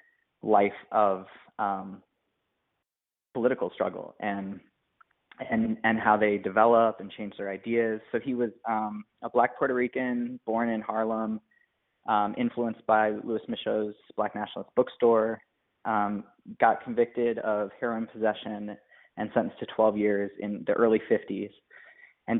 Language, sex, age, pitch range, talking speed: English, male, 20-39, 105-120 Hz, 135 wpm